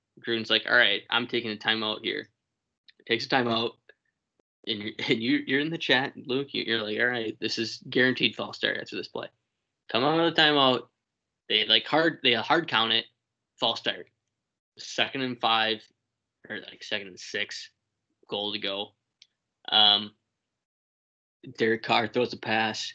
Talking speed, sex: 165 wpm, male